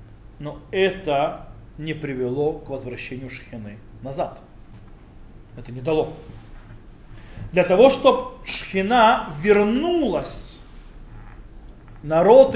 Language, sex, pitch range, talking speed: Russian, male, 165-225 Hz, 80 wpm